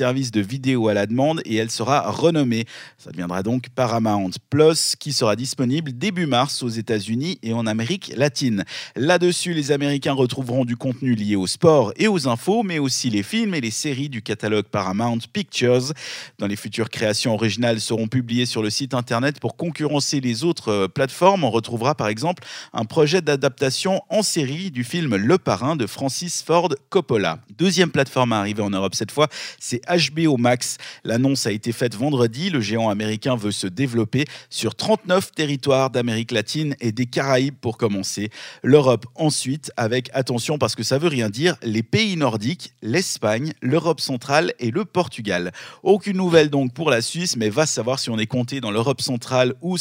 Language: French